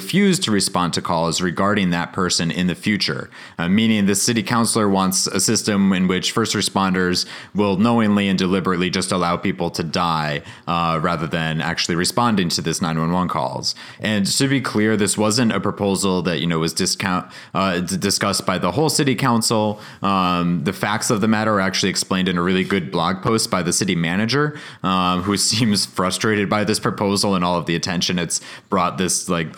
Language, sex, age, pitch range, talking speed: English, male, 30-49, 85-105 Hz, 200 wpm